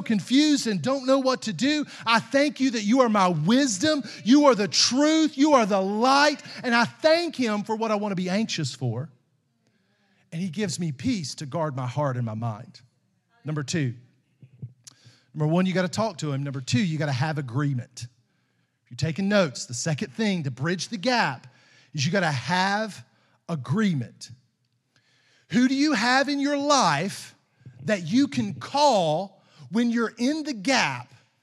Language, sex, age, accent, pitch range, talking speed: English, male, 40-59, American, 140-230 Hz, 185 wpm